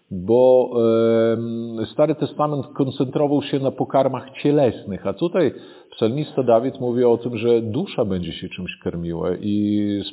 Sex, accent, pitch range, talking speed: male, native, 100-115 Hz, 135 wpm